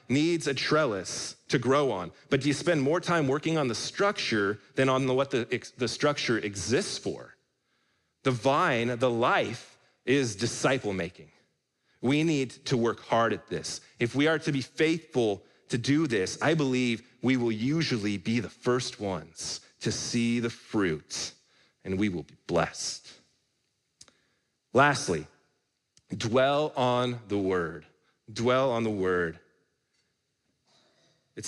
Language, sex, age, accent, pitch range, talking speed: English, male, 30-49, American, 115-145 Hz, 140 wpm